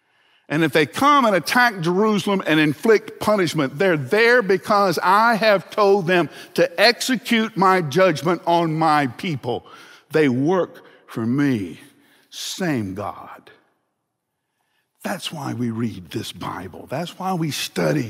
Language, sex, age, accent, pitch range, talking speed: English, male, 60-79, American, 105-175 Hz, 135 wpm